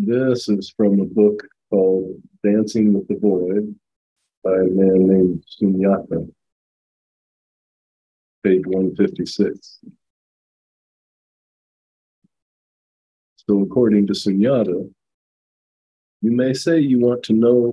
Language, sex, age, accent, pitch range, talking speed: English, male, 50-69, American, 95-120 Hz, 95 wpm